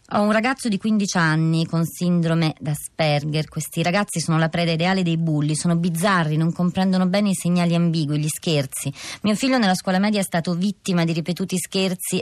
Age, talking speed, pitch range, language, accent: 30-49, 185 wpm, 165-200 Hz, Italian, native